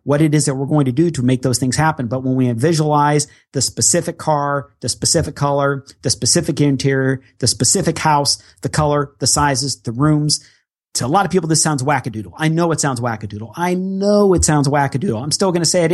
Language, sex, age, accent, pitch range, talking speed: English, male, 40-59, American, 125-165 Hz, 220 wpm